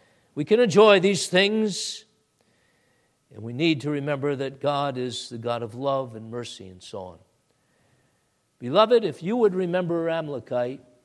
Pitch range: 155-245 Hz